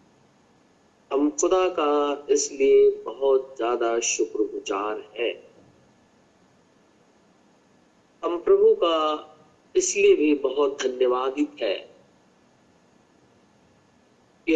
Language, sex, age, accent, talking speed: Hindi, male, 50-69, native, 70 wpm